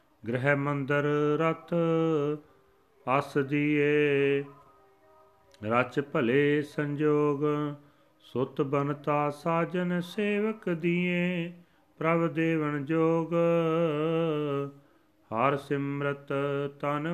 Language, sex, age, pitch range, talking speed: Punjabi, male, 40-59, 145-165 Hz, 65 wpm